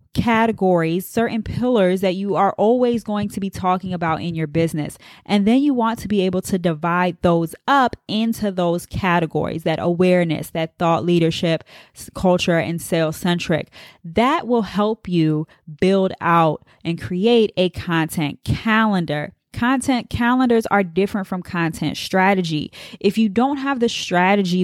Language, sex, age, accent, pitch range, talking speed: English, female, 20-39, American, 170-210 Hz, 150 wpm